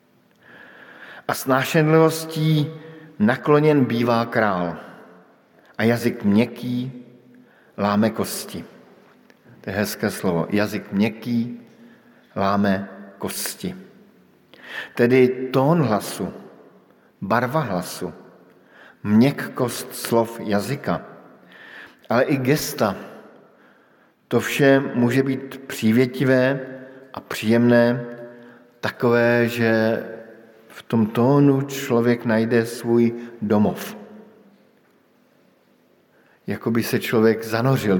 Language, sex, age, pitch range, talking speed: Slovak, male, 50-69, 110-135 Hz, 75 wpm